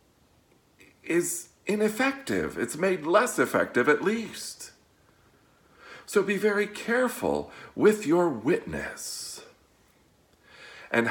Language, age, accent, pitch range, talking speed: English, 50-69, American, 115-170 Hz, 85 wpm